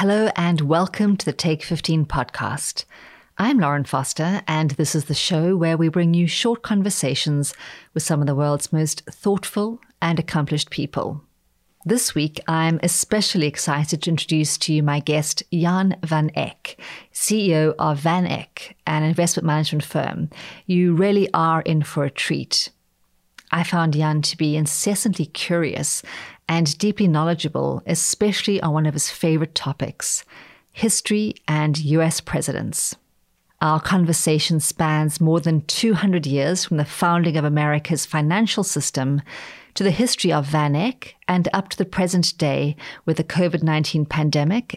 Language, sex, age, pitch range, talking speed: English, female, 40-59, 150-180 Hz, 150 wpm